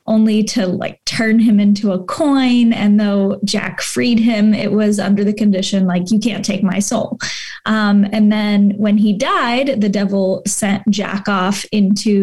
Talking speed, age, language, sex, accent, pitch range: 175 wpm, 10-29, English, female, American, 200-235 Hz